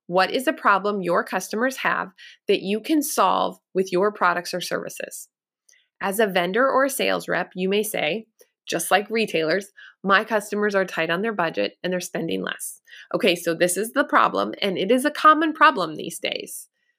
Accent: American